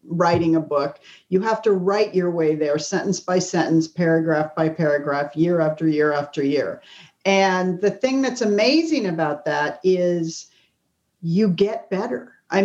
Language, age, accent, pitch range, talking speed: English, 40-59, American, 175-210 Hz, 155 wpm